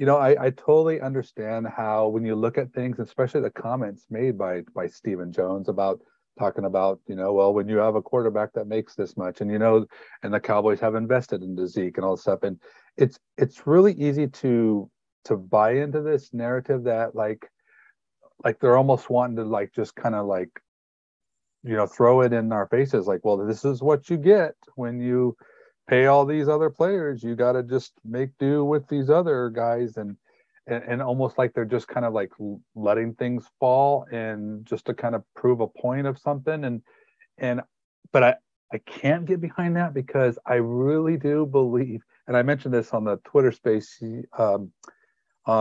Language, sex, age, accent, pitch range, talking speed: English, male, 40-59, American, 110-140 Hz, 195 wpm